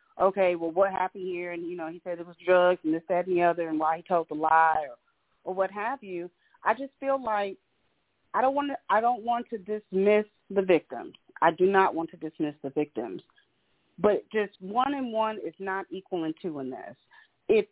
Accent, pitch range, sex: American, 180-225 Hz, female